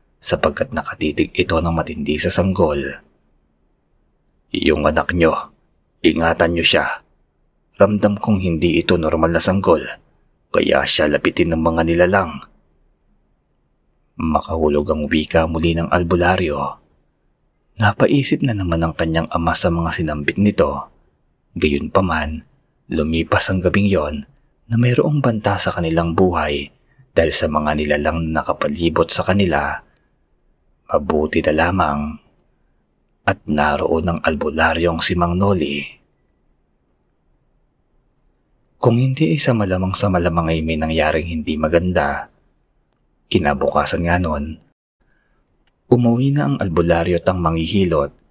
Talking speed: 115 wpm